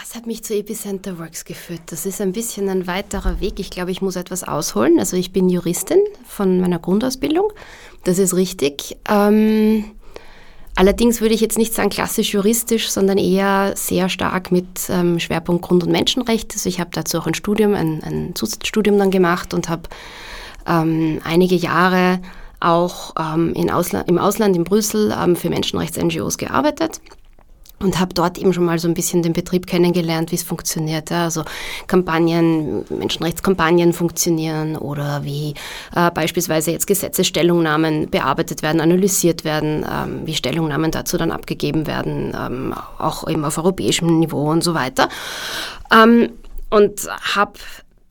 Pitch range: 165-200 Hz